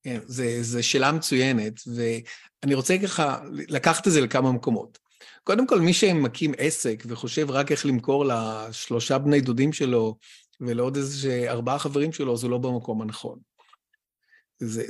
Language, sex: Hebrew, male